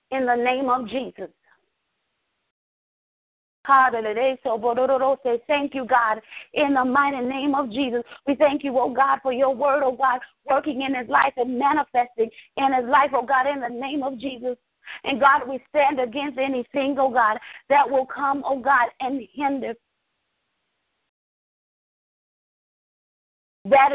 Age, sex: 40-59, female